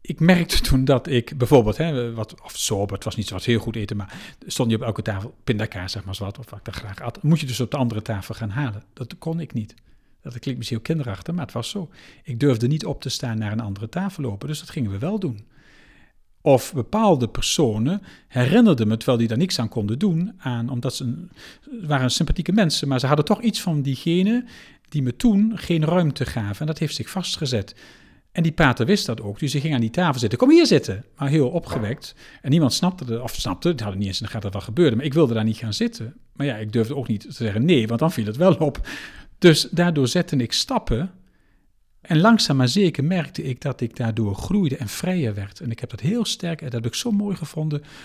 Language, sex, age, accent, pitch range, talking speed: Dutch, male, 50-69, Dutch, 115-165 Hz, 250 wpm